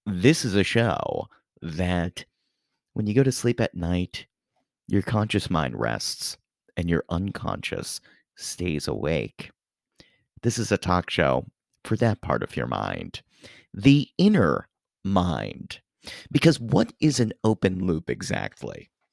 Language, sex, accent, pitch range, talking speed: English, male, American, 95-130 Hz, 130 wpm